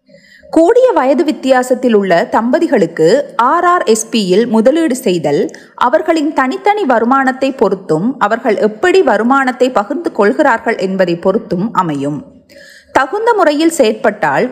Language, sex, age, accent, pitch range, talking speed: Tamil, female, 30-49, native, 205-310 Hz, 105 wpm